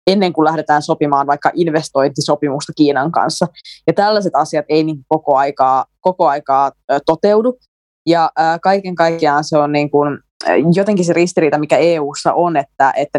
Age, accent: 20-39, native